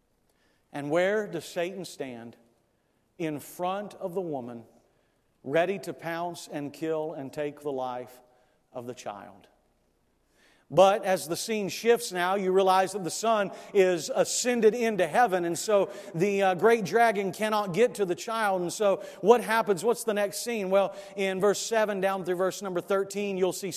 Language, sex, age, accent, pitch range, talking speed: English, male, 50-69, American, 180-225 Hz, 170 wpm